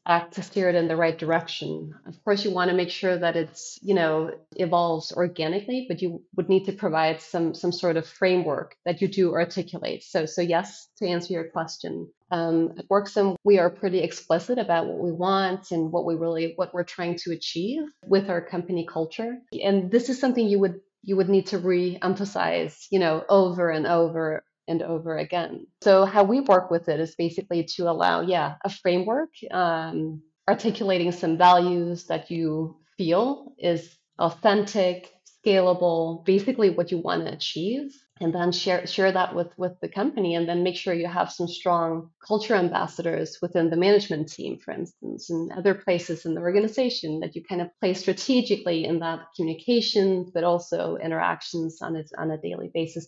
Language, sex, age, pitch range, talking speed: English, female, 30-49, 165-195 Hz, 185 wpm